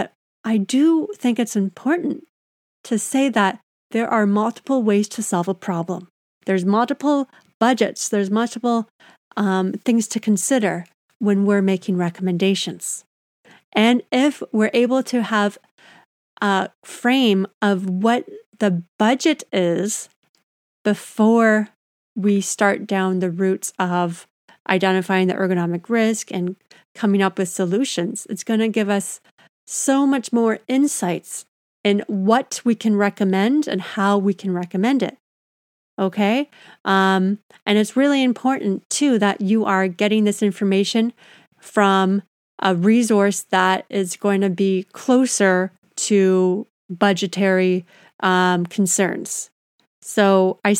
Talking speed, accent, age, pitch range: 125 wpm, American, 40-59, 190-230 Hz